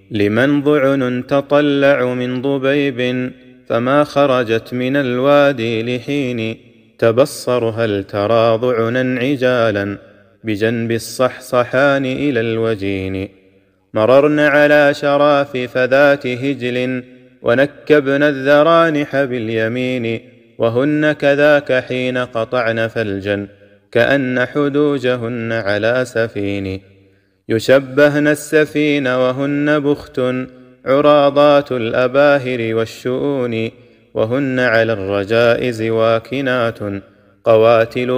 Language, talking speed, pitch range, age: Arabic, 75 wpm, 115-140 Hz, 30-49